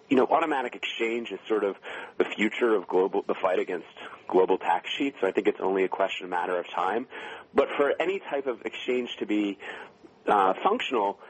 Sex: male